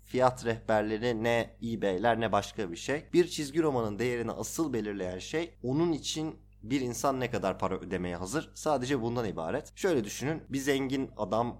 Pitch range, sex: 100-130 Hz, male